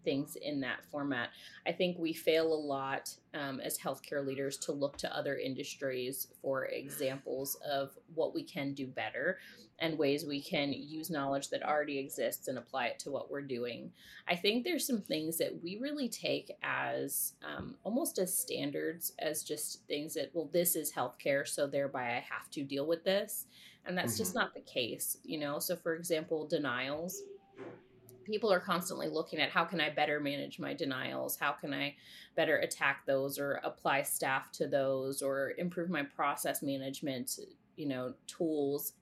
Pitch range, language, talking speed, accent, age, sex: 140-175 Hz, English, 180 wpm, American, 30-49, female